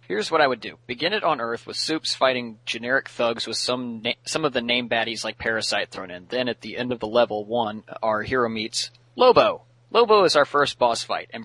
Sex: male